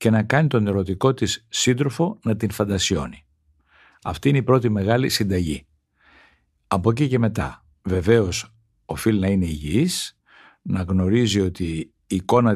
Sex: male